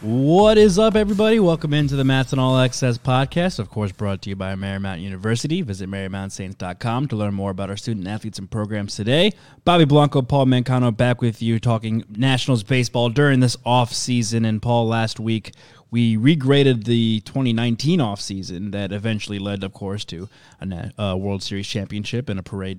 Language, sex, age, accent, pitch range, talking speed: English, male, 20-39, American, 110-135 Hz, 180 wpm